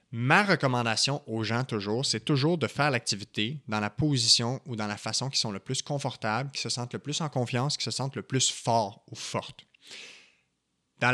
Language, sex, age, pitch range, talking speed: French, male, 20-39, 115-145 Hz, 205 wpm